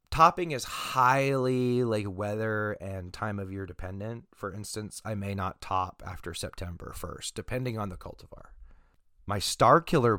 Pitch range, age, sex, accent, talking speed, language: 95-115 Hz, 30-49, male, American, 155 wpm, English